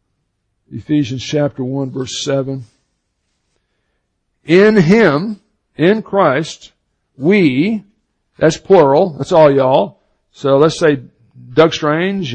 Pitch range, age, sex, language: 135-185 Hz, 60-79, male, English